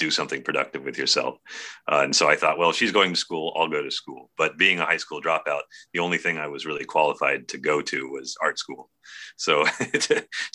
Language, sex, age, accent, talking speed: English, male, 30-49, American, 235 wpm